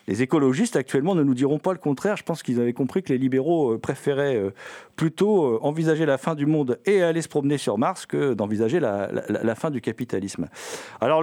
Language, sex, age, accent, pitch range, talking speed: French, male, 40-59, French, 120-165 Hz, 210 wpm